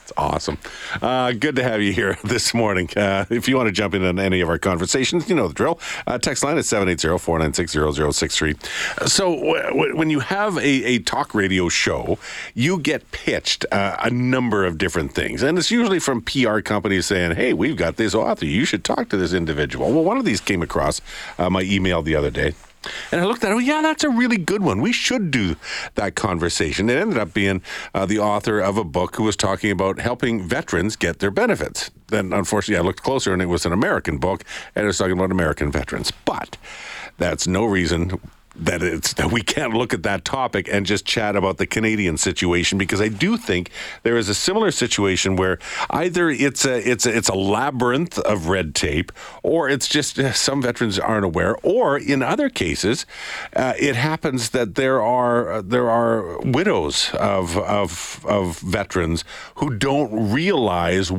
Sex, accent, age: male, American, 50-69